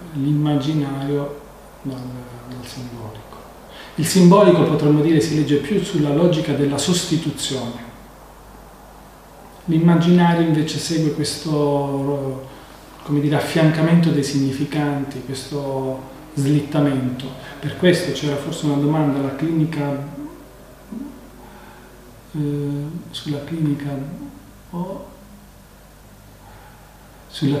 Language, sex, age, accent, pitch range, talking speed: Italian, male, 40-59, native, 140-170 Hz, 85 wpm